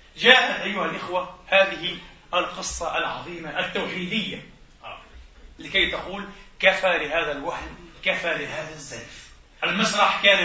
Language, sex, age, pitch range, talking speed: Arabic, male, 40-59, 165-205 Hz, 100 wpm